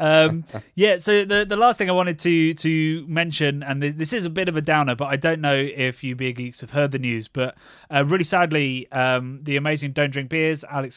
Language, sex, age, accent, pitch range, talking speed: English, male, 20-39, British, 120-145 Hz, 235 wpm